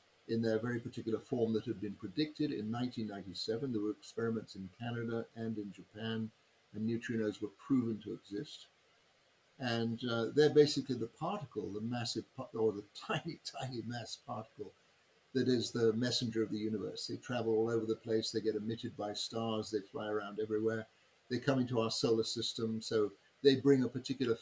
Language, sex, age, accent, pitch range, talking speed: English, male, 50-69, British, 110-125 Hz, 175 wpm